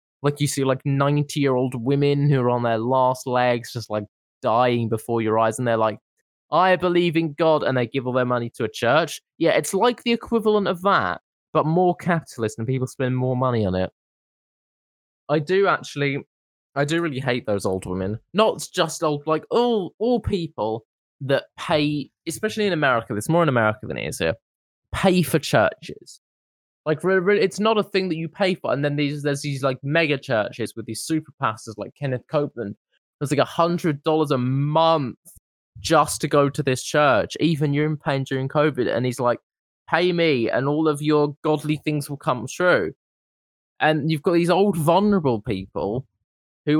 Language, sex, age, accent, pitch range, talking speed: English, male, 20-39, British, 120-160 Hz, 190 wpm